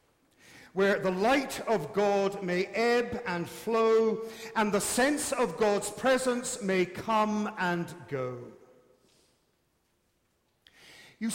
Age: 50-69